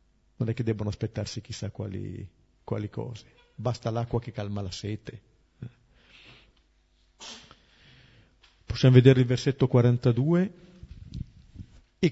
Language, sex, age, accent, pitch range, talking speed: Italian, male, 50-69, native, 110-150 Hz, 105 wpm